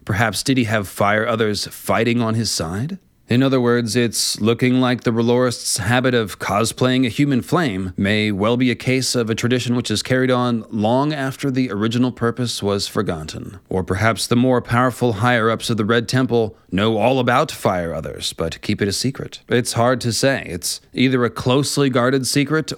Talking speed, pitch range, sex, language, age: 190 wpm, 105-125 Hz, male, English, 30-49